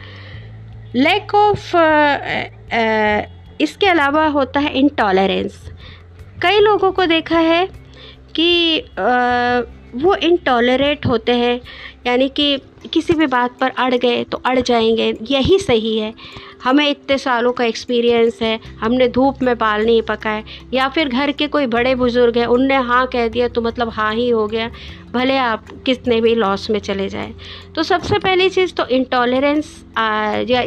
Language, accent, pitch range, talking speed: Hindi, native, 220-285 Hz, 155 wpm